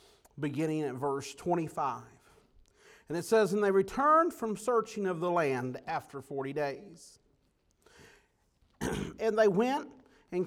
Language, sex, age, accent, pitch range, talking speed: English, male, 50-69, American, 160-230 Hz, 125 wpm